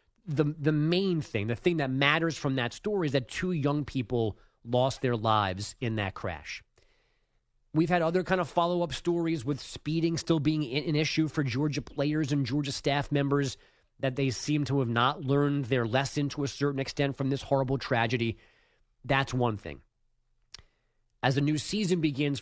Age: 30-49